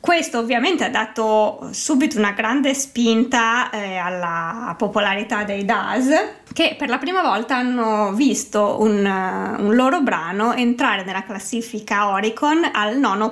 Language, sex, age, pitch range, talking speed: Italian, female, 20-39, 205-255 Hz, 140 wpm